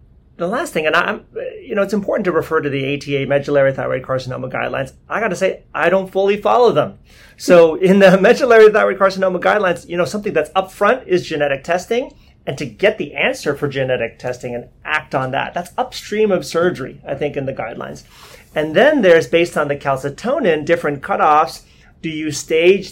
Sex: male